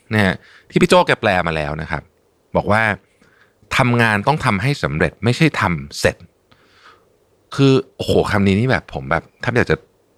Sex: male